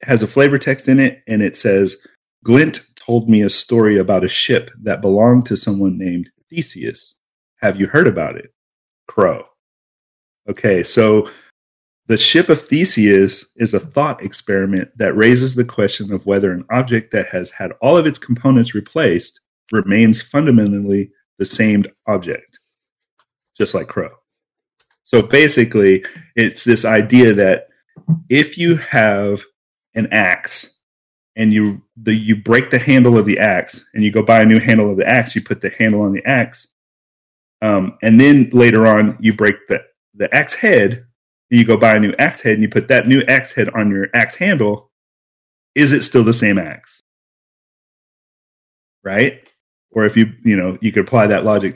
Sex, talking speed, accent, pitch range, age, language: male, 170 wpm, American, 100-125 Hz, 40-59, English